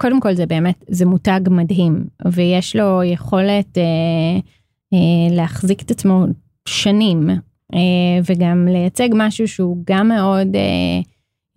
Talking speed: 120 wpm